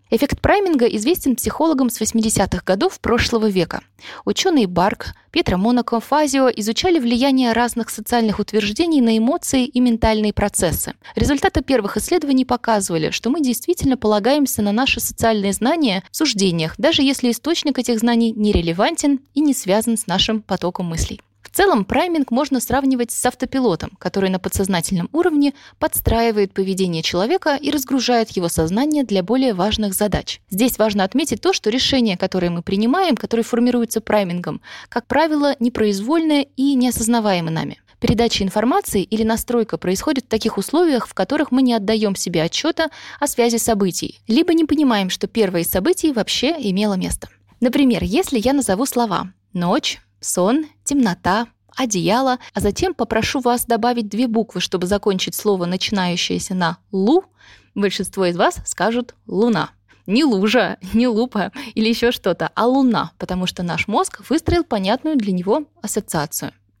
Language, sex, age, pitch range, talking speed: Russian, female, 20-39, 195-265 Hz, 145 wpm